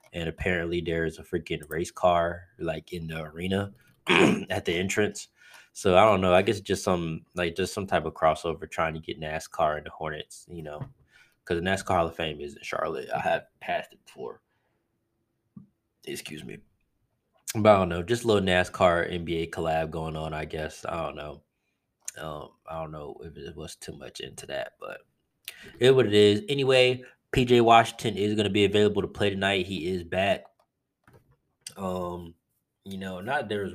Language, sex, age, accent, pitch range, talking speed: English, male, 20-39, American, 80-100 Hz, 190 wpm